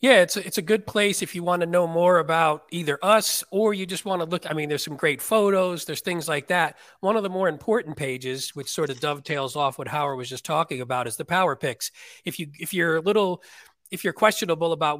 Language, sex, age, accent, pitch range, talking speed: English, male, 40-59, American, 145-175 Hz, 250 wpm